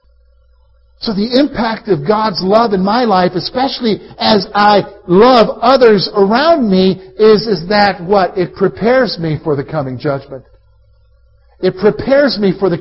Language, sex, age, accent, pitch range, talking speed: English, male, 50-69, American, 130-215 Hz, 150 wpm